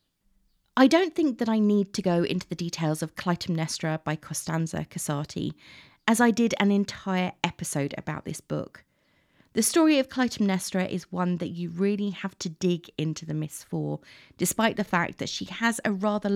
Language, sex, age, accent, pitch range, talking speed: English, female, 30-49, British, 160-195 Hz, 180 wpm